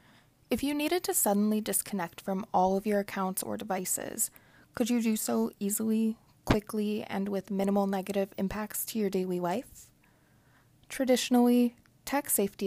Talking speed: 145 wpm